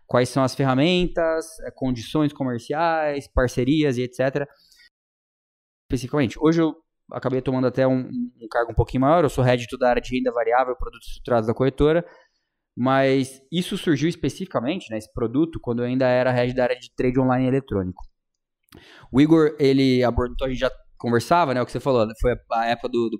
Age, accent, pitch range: 20-39, Brazilian, 120-150 Hz